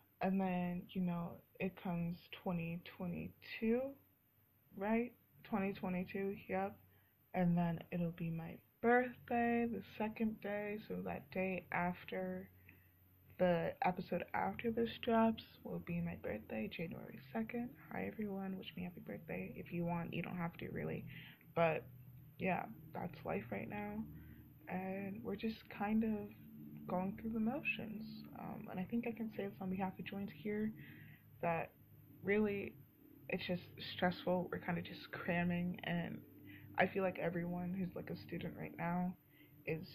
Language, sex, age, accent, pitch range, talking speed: English, female, 20-39, American, 135-195 Hz, 145 wpm